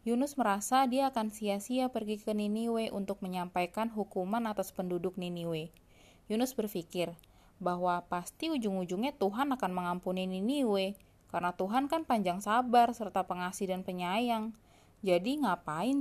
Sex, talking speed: female, 125 wpm